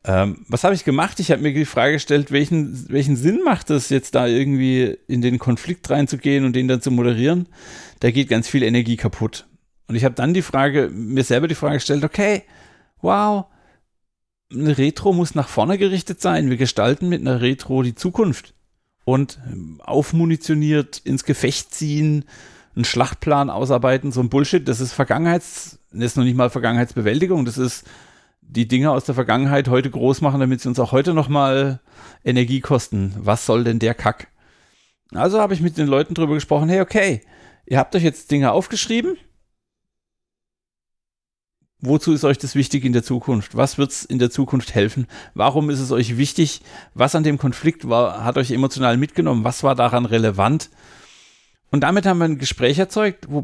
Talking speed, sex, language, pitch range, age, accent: 180 wpm, male, German, 125-155 Hz, 40-59, German